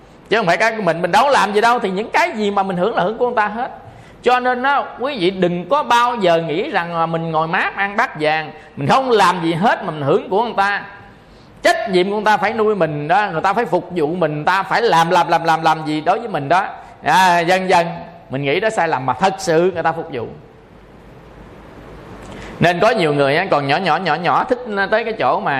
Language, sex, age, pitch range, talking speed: Vietnamese, male, 20-39, 155-210 Hz, 255 wpm